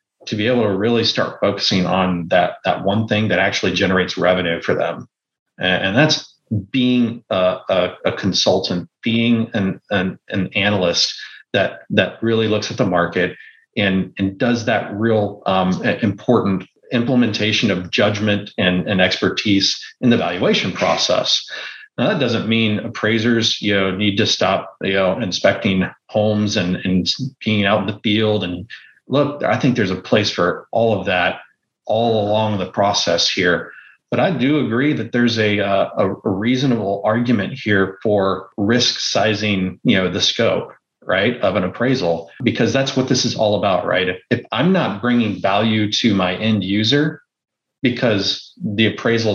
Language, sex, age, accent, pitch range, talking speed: English, male, 30-49, American, 95-115 Hz, 165 wpm